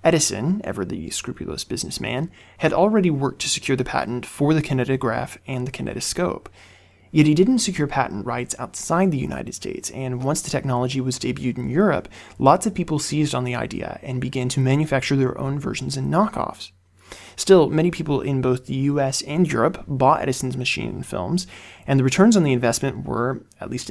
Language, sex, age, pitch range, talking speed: English, male, 20-39, 120-150 Hz, 190 wpm